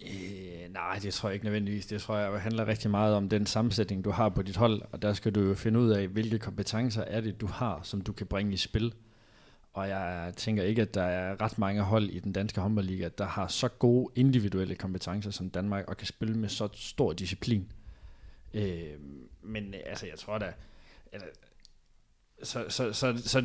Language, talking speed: Danish, 200 wpm